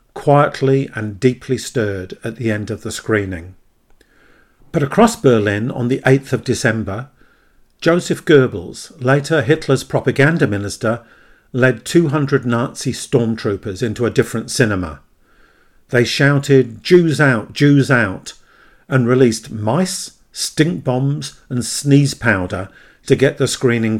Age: 50-69